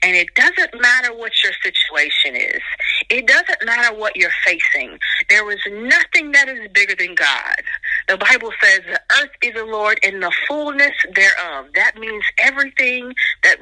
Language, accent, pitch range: English, American, 195-270 Hz